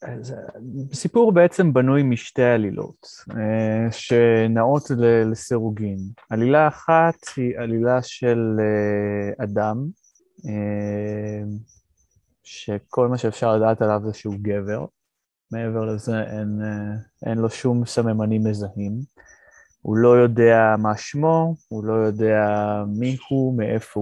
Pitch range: 105-125 Hz